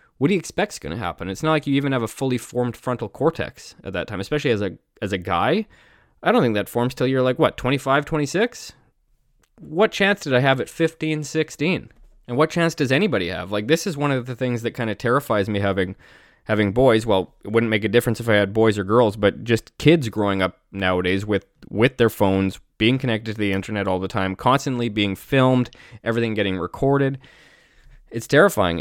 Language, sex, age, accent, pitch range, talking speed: English, male, 20-39, American, 105-130 Hz, 220 wpm